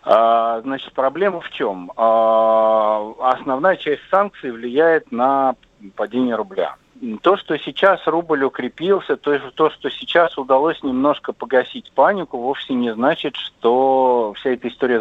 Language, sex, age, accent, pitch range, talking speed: Russian, male, 50-69, native, 105-135 Hz, 120 wpm